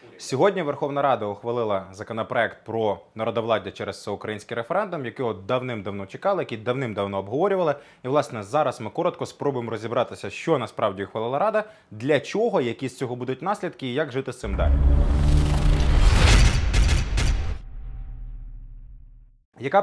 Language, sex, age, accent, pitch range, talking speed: Ukrainian, male, 20-39, native, 105-140 Hz, 125 wpm